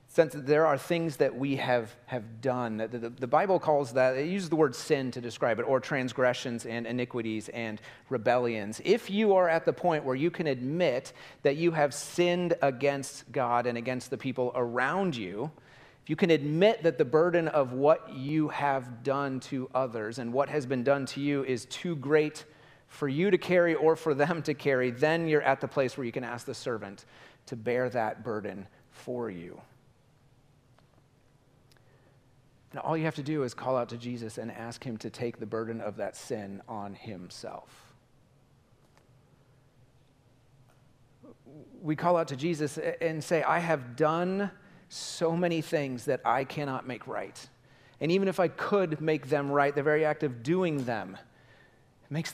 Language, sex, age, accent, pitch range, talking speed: English, male, 30-49, American, 125-155 Hz, 180 wpm